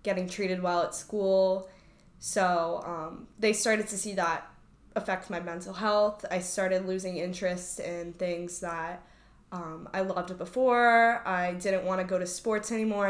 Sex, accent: female, American